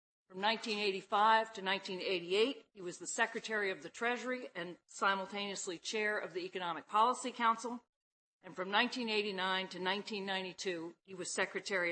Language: English